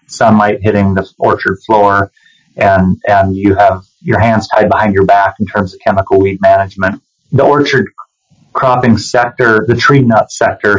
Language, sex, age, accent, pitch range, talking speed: English, male, 30-49, American, 100-115 Hz, 160 wpm